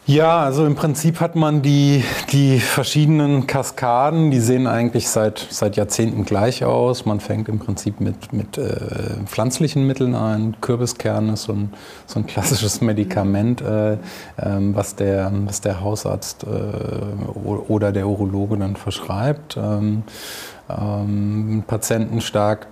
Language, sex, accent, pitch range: German, male, German, 100-120 Hz